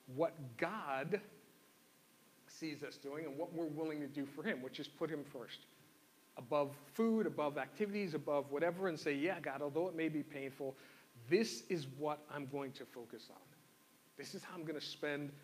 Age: 40-59